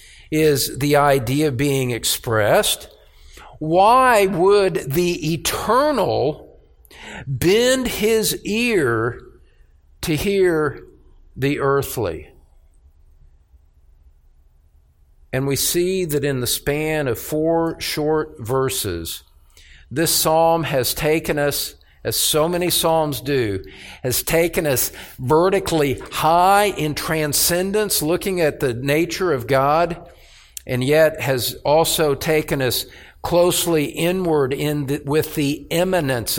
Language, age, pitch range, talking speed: English, 50-69, 120-165 Hz, 105 wpm